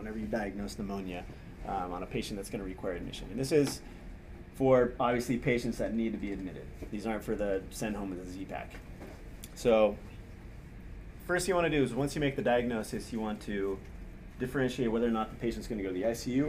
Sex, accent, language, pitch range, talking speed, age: male, American, English, 100-130 Hz, 220 wpm, 30-49